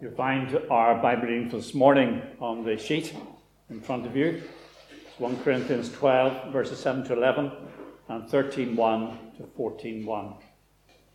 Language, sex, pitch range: English, male, 125-145 Hz